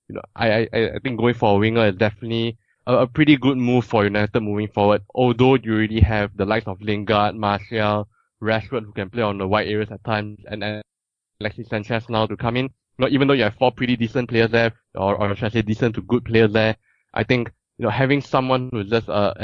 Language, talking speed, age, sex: English, 245 wpm, 20-39, male